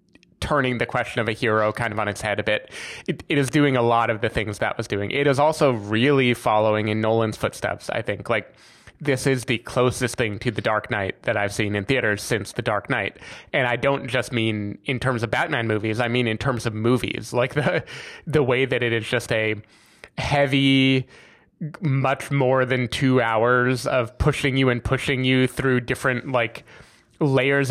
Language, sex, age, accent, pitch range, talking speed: English, male, 20-39, American, 115-140 Hz, 205 wpm